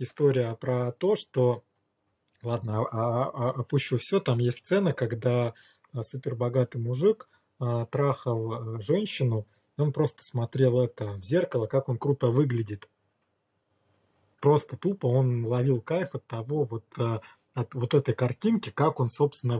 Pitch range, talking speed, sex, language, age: 115-140 Hz, 125 wpm, male, Russian, 20-39